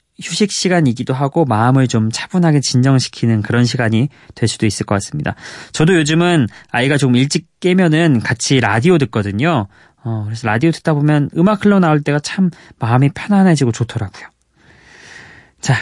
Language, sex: Korean, male